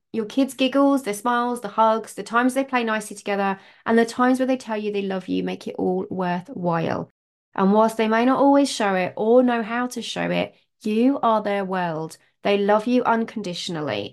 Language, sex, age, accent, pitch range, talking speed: English, female, 20-39, British, 185-235 Hz, 210 wpm